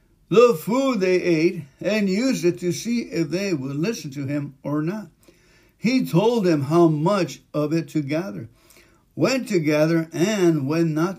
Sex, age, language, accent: male, 60-79, English, American